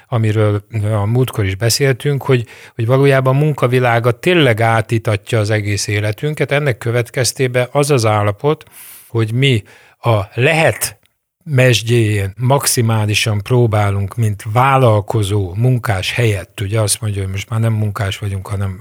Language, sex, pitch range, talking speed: Hungarian, male, 105-125 Hz, 130 wpm